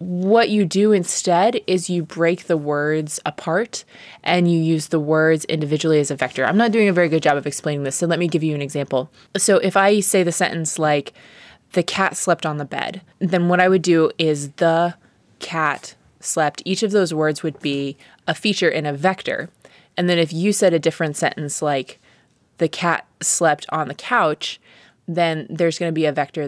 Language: English